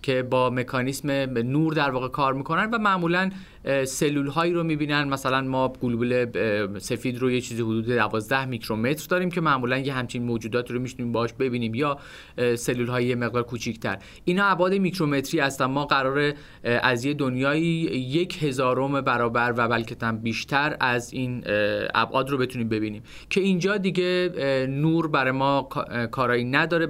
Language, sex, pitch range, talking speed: Persian, male, 120-145 Hz, 155 wpm